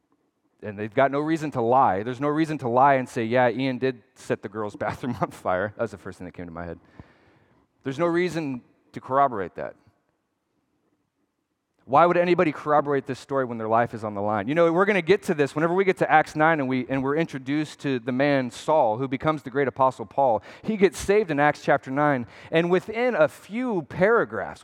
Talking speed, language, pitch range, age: 225 wpm, English, 130-175 Hz, 30-49